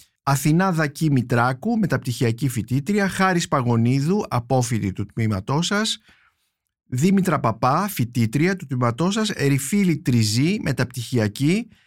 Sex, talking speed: male, 100 wpm